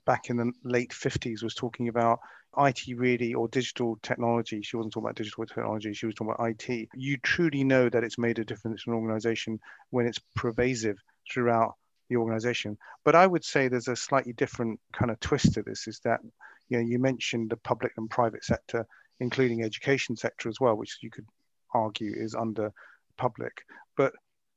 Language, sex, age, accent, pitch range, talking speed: English, male, 40-59, British, 115-125 Hz, 190 wpm